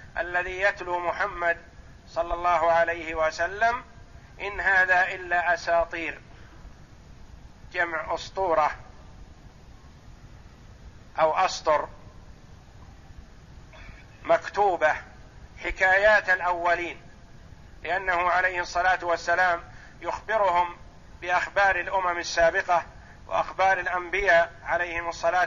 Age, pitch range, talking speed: 50-69, 165-185 Hz, 70 wpm